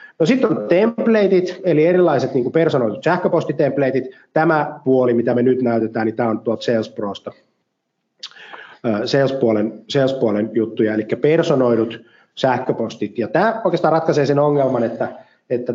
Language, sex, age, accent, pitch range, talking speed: Finnish, male, 30-49, native, 110-150 Hz, 130 wpm